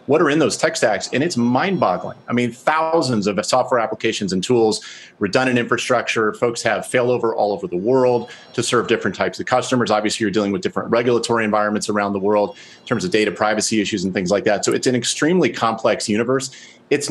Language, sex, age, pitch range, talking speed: English, male, 40-59, 105-120 Hz, 205 wpm